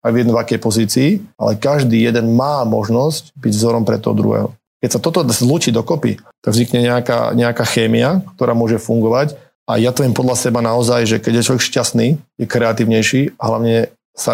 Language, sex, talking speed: Slovak, male, 185 wpm